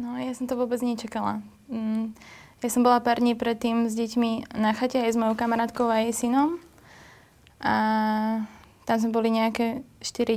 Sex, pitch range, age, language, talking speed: female, 215-235 Hz, 20-39, Slovak, 170 wpm